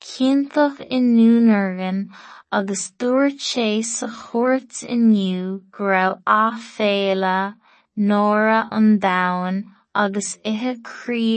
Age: 20-39